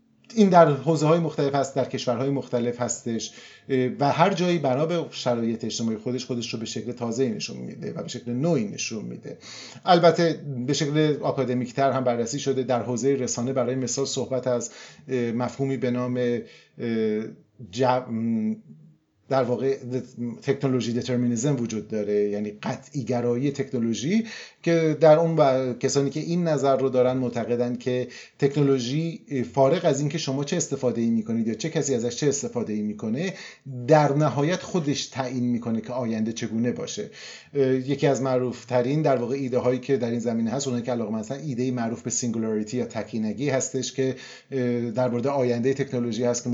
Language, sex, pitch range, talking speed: Persian, male, 120-140 Hz, 160 wpm